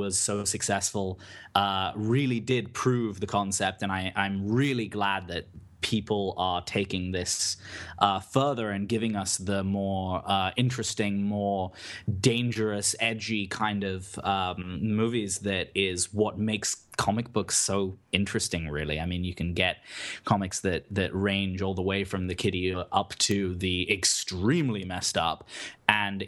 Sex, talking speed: male, 150 wpm